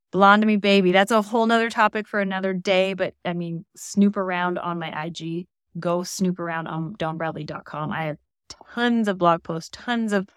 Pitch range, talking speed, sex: 170-205 Hz, 190 wpm, female